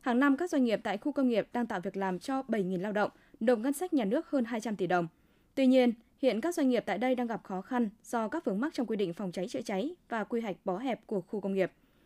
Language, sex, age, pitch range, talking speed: Vietnamese, female, 20-39, 200-270 Hz, 290 wpm